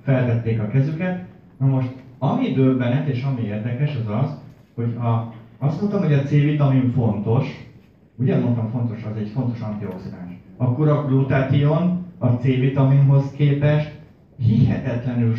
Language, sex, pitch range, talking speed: Hungarian, male, 110-140 Hz, 140 wpm